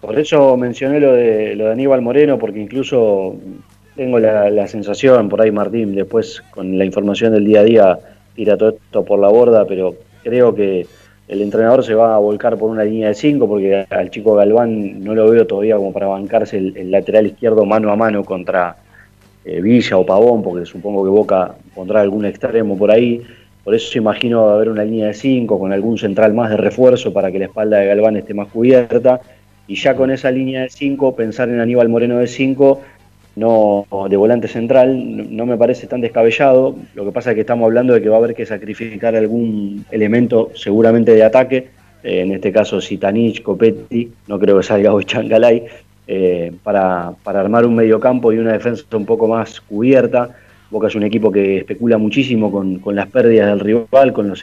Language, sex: Spanish, male